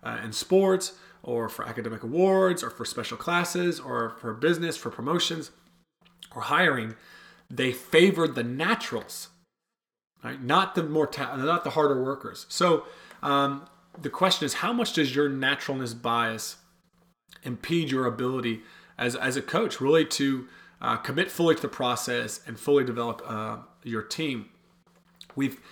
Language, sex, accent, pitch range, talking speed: English, male, American, 120-160 Hz, 150 wpm